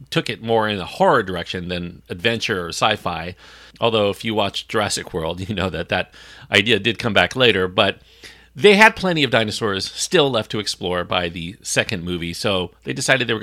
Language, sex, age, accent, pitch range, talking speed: English, male, 40-59, American, 90-125 Hz, 200 wpm